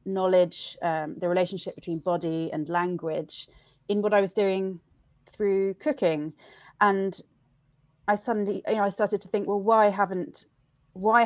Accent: British